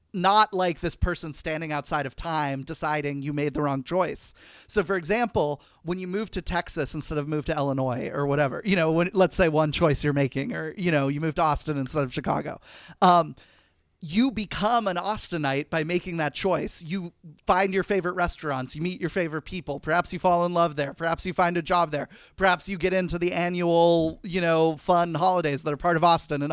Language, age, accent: English, 30-49, American